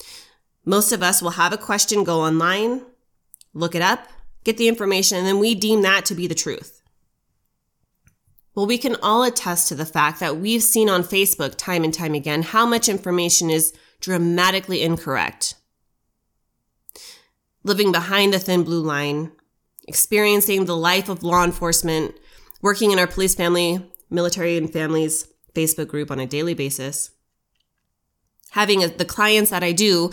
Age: 20-39